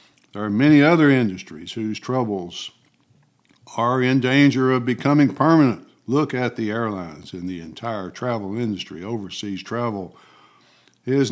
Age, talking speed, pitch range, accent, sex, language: 60-79, 135 wpm, 105-130 Hz, American, male, English